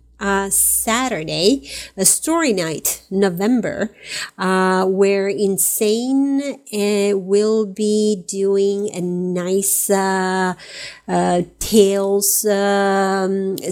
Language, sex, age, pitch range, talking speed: English, female, 30-49, 185-205 Hz, 85 wpm